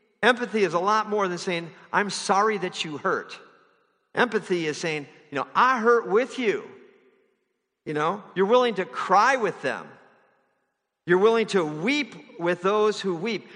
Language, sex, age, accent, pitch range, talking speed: English, male, 50-69, American, 155-240 Hz, 165 wpm